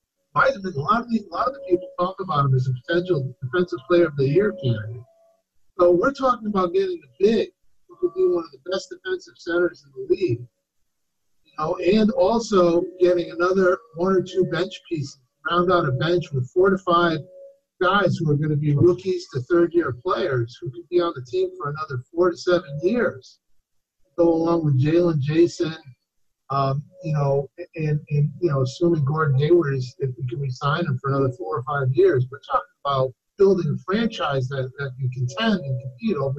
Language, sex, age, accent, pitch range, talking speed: English, male, 50-69, American, 140-185 Hz, 205 wpm